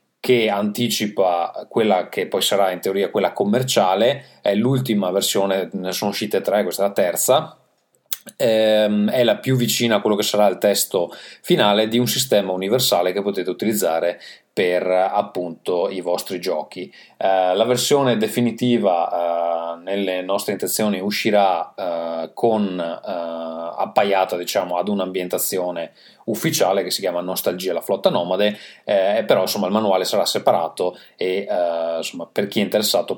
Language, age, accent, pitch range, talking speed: Italian, 30-49, native, 85-105 Hz, 150 wpm